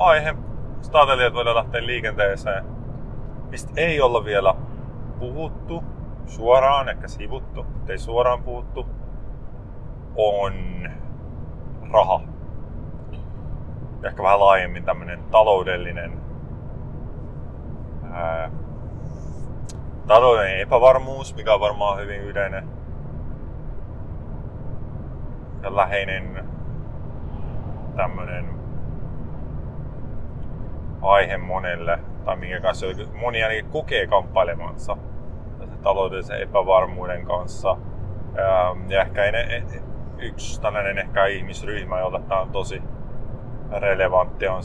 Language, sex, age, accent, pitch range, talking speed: Finnish, male, 30-49, native, 90-120 Hz, 75 wpm